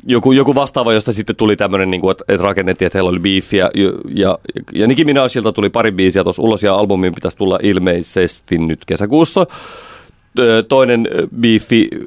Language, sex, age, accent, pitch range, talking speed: Finnish, male, 30-49, native, 95-135 Hz, 160 wpm